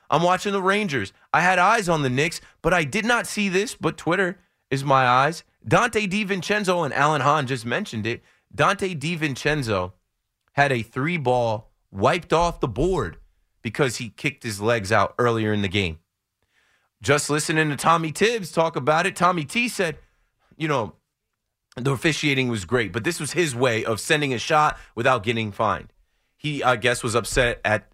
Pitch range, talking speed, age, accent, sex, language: 110-165 Hz, 180 wpm, 30-49, American, male, English